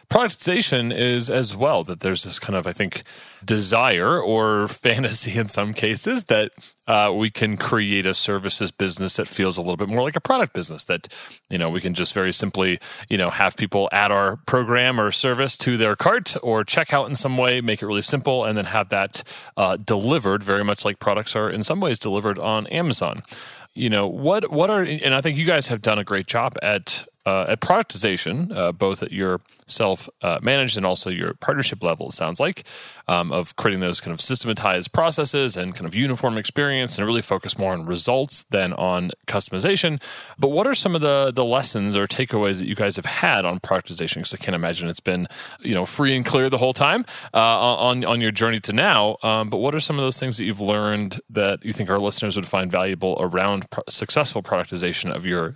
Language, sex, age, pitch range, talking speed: English, male, 30-49, 100-130 Hz, 215 wpm